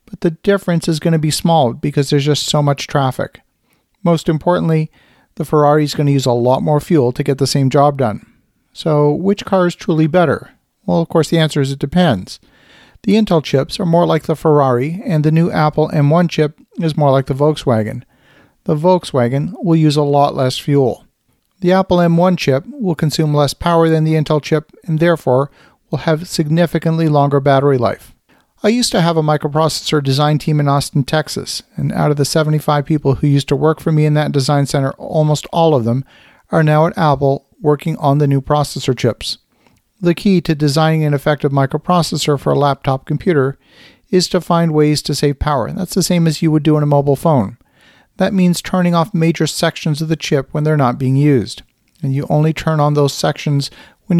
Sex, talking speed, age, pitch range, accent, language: male, 205 wpm, 40-59, 140-165 Hz, American, English